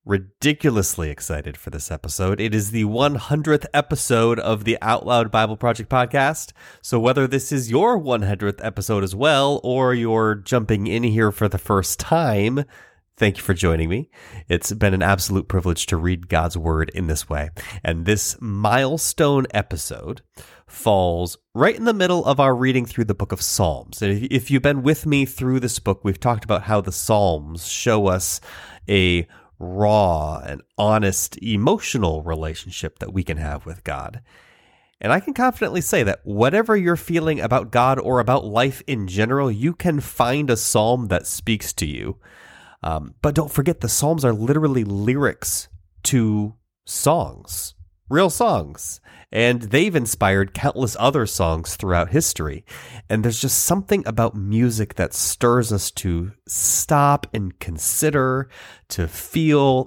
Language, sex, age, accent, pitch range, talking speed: English, male, 30-49, American, 90-130 Hz, 160 wpm